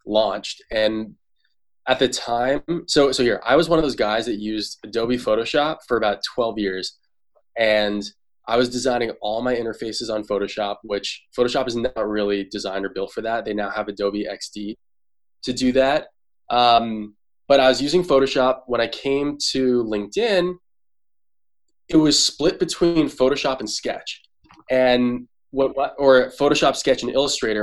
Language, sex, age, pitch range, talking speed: English, male, 20-39, 110-140 Hz, 160 wpm